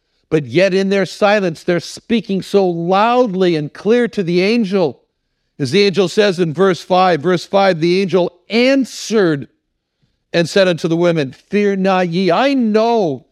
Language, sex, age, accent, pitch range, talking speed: English, male, 60-79, American, 160-210 Hz, 160 wpm